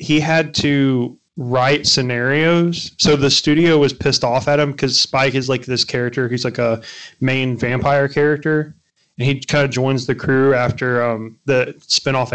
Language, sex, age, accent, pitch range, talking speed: English, male, 30-49, American, 125-145 Hz, 175 wpm